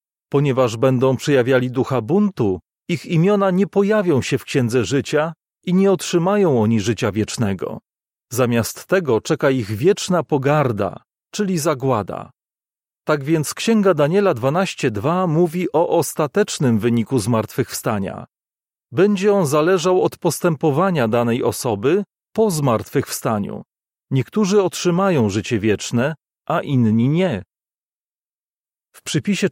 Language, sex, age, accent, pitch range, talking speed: Polish, male, 40-59, native, 125-175 Hz, 110 wpm